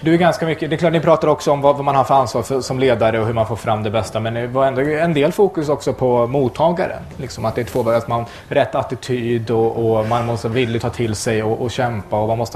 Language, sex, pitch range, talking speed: English, male, 110-150 Hz, 280 wpm